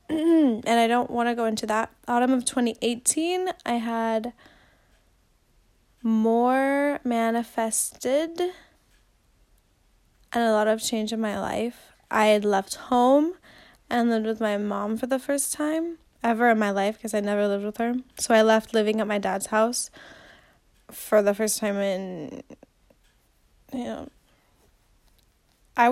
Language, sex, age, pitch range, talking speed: English, female, 10-29, 220-260 Hz, 145 wpm